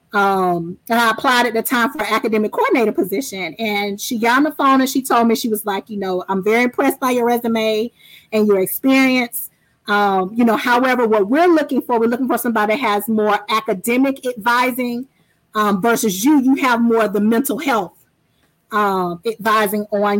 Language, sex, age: English, female, 30-49